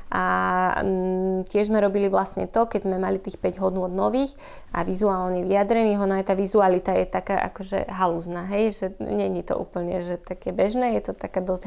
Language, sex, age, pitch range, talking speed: Slovak, female, 20-39, 180-205 Hz, 195 wpm